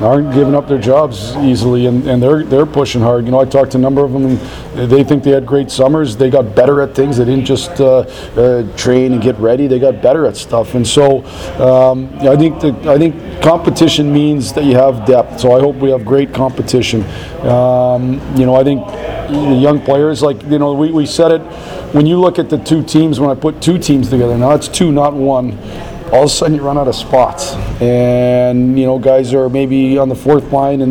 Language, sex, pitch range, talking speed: English, male, 130-145 Hz, 240 wpm